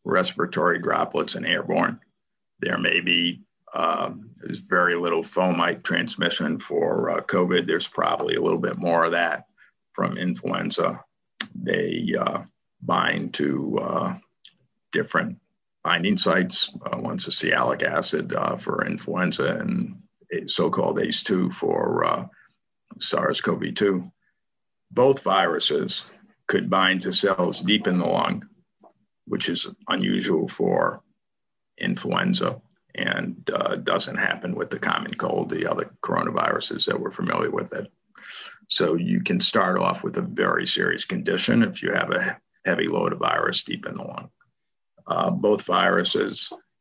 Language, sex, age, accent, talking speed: English, male, 50-69, American, 130 wpm